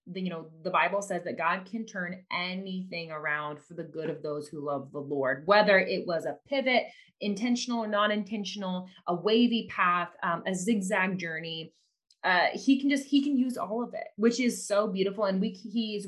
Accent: American